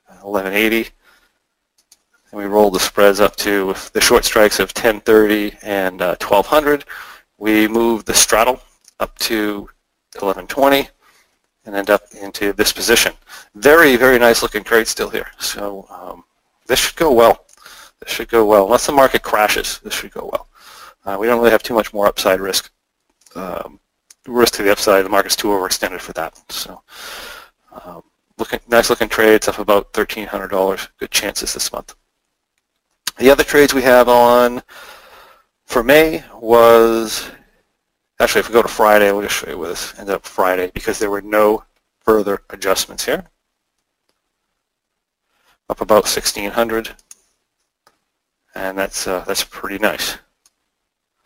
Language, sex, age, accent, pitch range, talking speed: English, male, 30-49, American, 100-115 Hz, 150 wpm